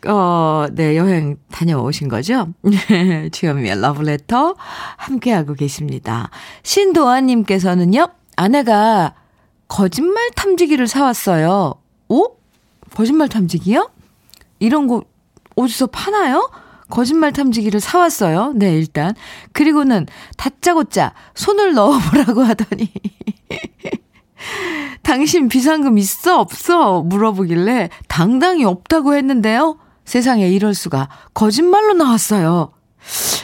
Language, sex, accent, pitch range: Korean, female, native, 180-280 Hz